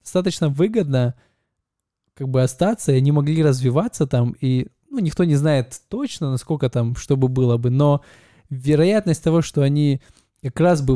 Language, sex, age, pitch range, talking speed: Russian, male, 20-39, 130-160 Hz, 165 wpm